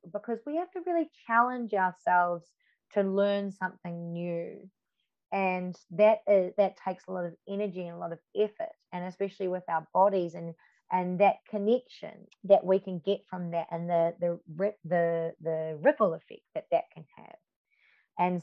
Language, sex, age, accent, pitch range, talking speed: English, female, 20-39, Australian, 170-205 Hz, 175 wpm